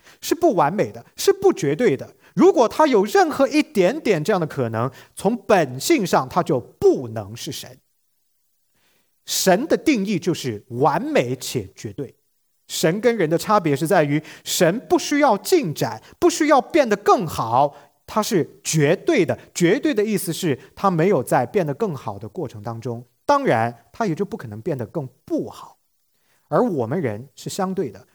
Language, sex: English, male